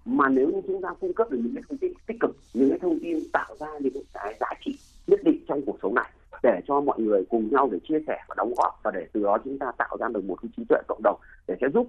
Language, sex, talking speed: Vietnamese, male, 300 wpm